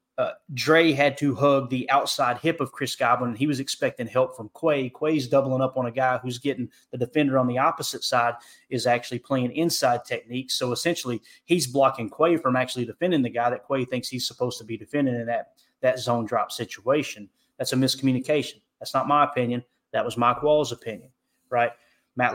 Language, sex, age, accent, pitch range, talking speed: English, male, 30-49, American, 125-150 Hz, 200 wpm